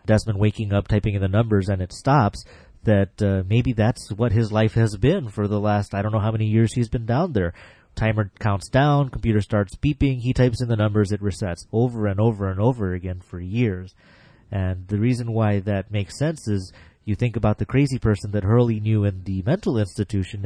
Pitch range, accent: 95-115 Hz, American